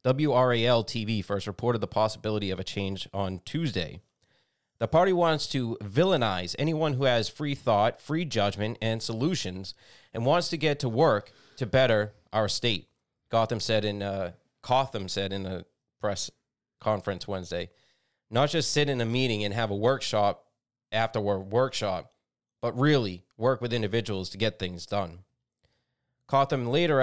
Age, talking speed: 30-49, 145 wpm